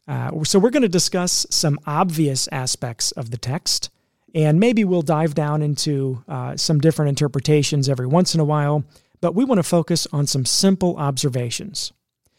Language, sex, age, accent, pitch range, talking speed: English, male, 40-59, American, 130-170 Hz, 175 wpm